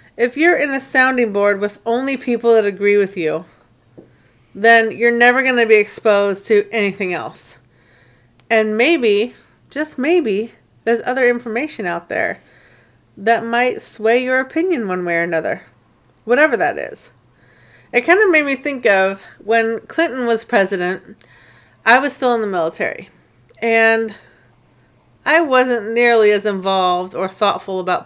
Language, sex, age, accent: English, female, 30-49, American